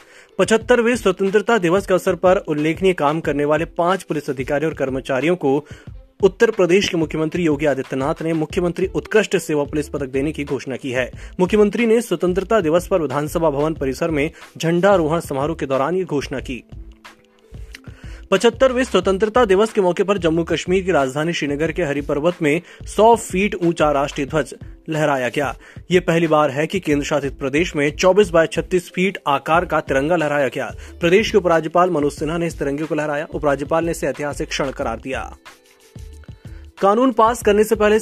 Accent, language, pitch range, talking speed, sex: native, Hindi, 145-190 Hz, 175 wpm, male